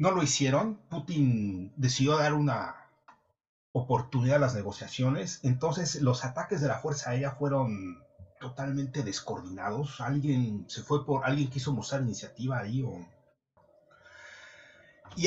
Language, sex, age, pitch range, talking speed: Spanish, male, 40-59, 120-155 Hz, 125 wpm